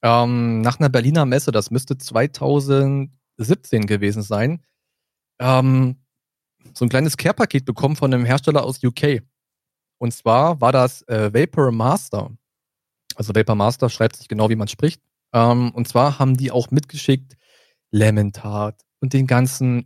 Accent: German